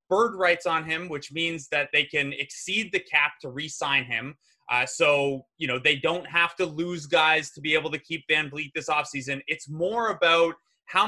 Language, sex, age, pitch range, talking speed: English, male, 20-39, 140-180 Hz, 210 wpm